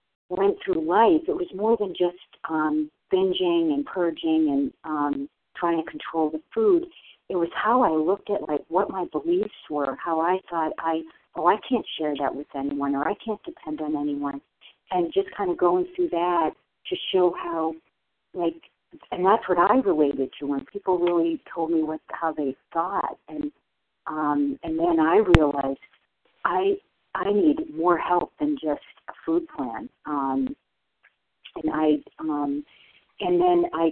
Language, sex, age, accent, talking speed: English, female, 50-69, American, 170 wpm